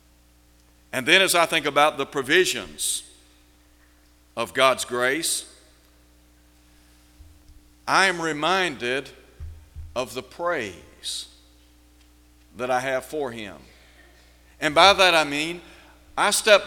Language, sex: English, male